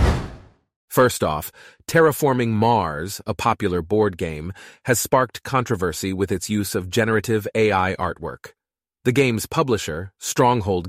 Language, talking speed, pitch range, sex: English, 120 wpm, 95-125 Hz, male